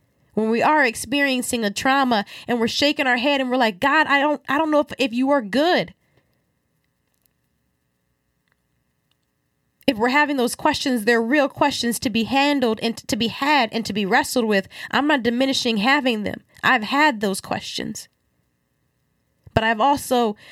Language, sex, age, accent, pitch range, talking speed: English, female, 20-39, American, 200-265 Hz, 165 wpm